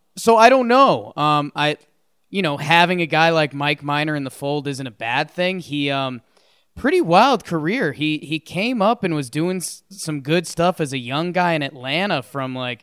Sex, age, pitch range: male, 20-39, 150-200 Hz